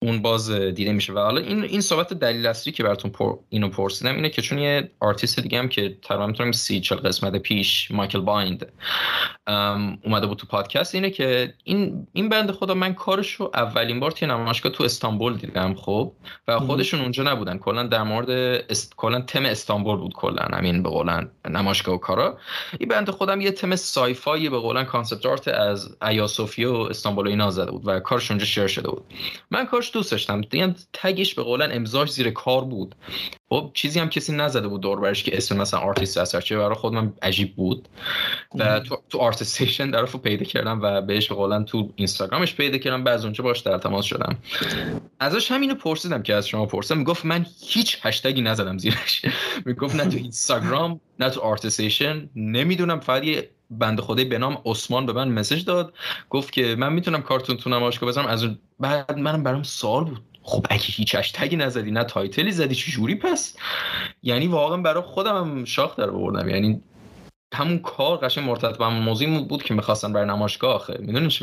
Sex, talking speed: male, 180 wpm